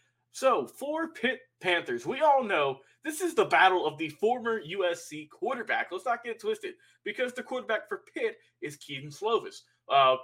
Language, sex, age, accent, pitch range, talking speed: English, male, 20-39, American, 145-185 Hz, 170 wpm